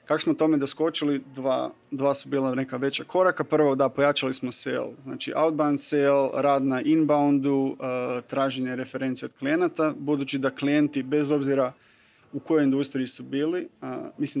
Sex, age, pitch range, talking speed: male, 30-49, 135-150 Hz, 165 wpm